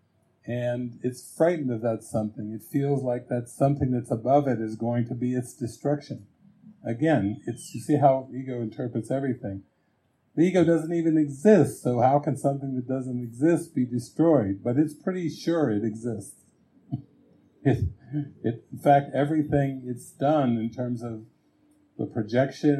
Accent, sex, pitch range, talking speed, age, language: American, male, 120-145 Hz, 160 wpm, 50-69, English